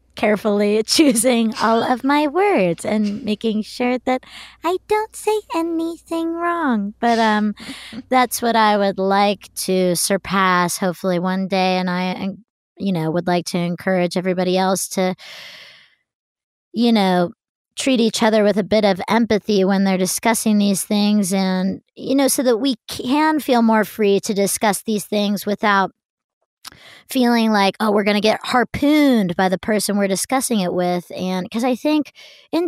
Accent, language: American, English